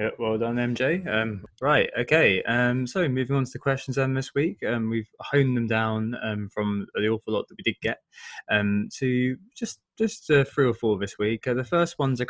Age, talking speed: 20-39, 225 wpm